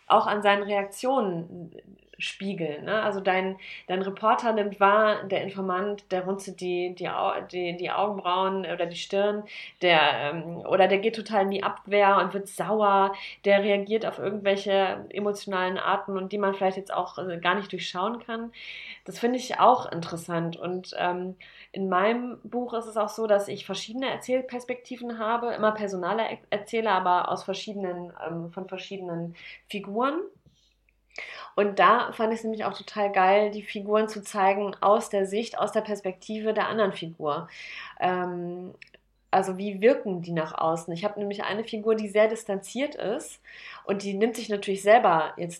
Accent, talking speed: German, 165 wpm